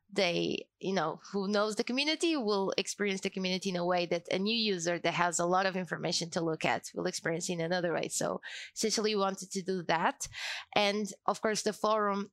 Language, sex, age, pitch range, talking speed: English, female, 20-39, 180-215 Hz, 215 wpm